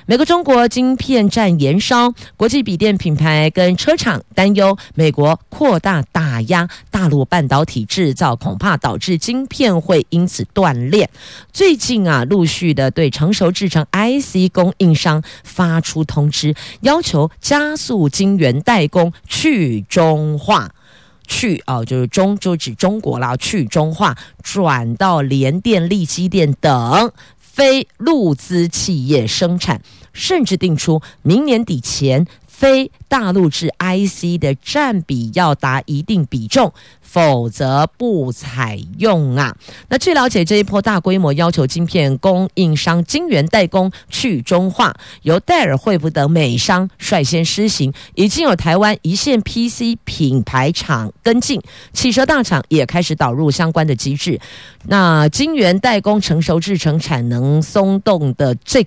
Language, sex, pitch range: Chinese, female, 150-210 Hz